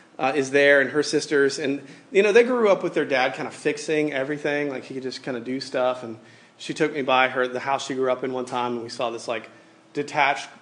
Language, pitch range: English, 130-155 Hz